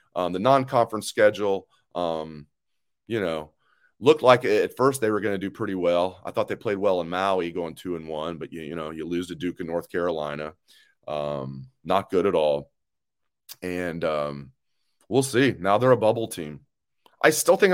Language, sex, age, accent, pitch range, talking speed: English, male, 30-49, American, 95-135 Hz, 195 wpm